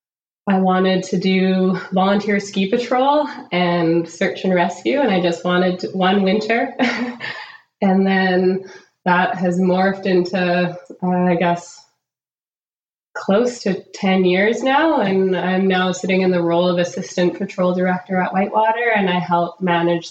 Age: 20-39